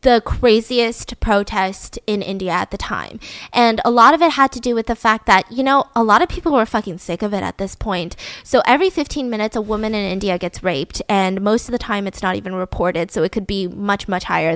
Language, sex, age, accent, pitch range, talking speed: English, female, 10-29, American, 200-255 Hz, 245 wpm